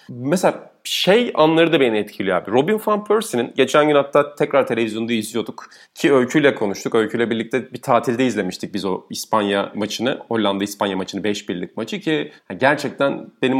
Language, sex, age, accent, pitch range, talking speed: Turkish, male, 30-49, native, 115-160 Hz, 160 wpm